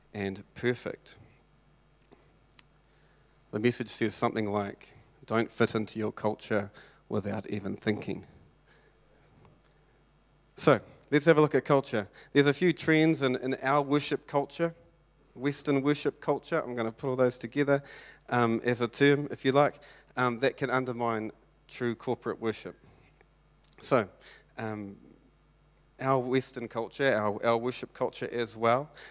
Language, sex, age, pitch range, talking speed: English, male, 30-49, 115-145 Hz, 135 wpm